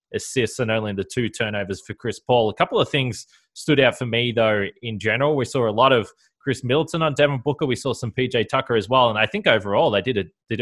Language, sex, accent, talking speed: English, male, Australian, 260 wpm